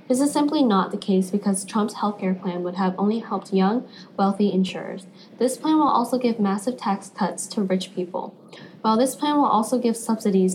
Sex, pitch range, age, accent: female, 185-225 Hz, 10-29, American